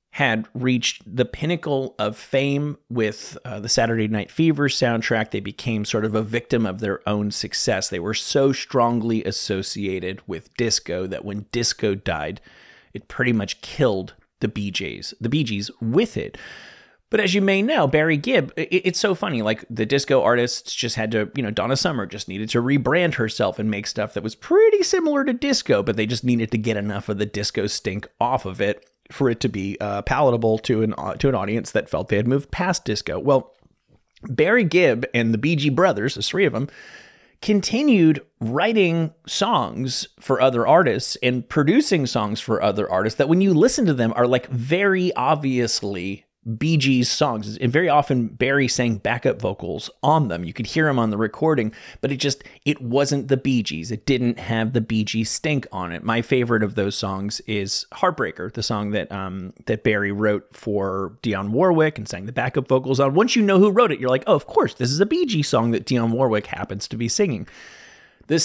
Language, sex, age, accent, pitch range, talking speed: English, male, 30-49, American, 110-145 Hz, 200 wpm